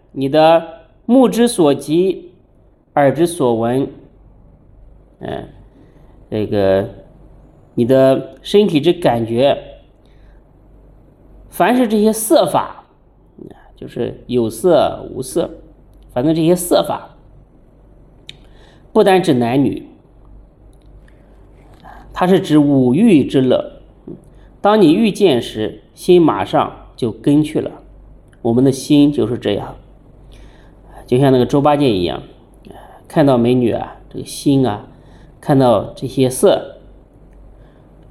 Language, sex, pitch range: Chinese, male, 125-185 Hz